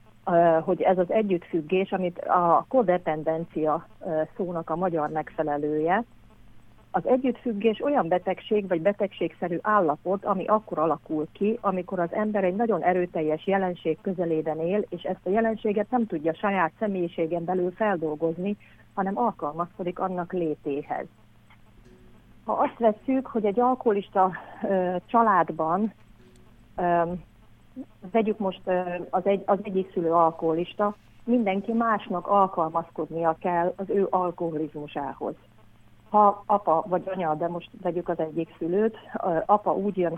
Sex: female